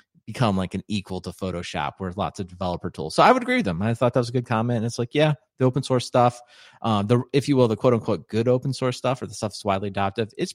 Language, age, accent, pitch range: English, 30-49, American, 95-125 Hz